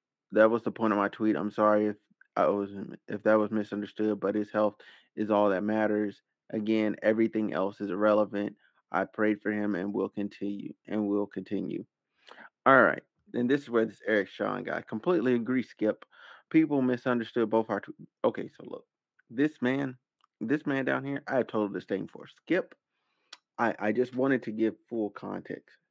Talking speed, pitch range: 185 wpm, 105-120 Hz